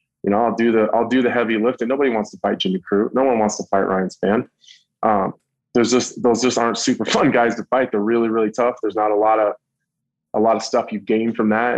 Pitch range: 115-140 Hz